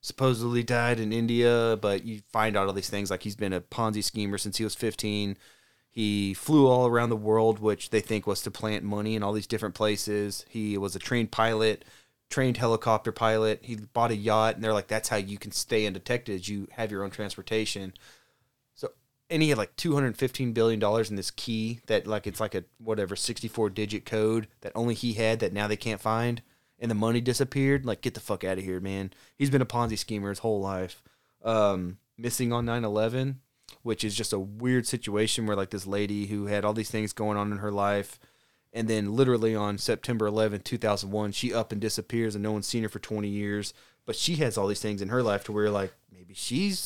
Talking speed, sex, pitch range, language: 220 wpm, male, 105-120 Hz, English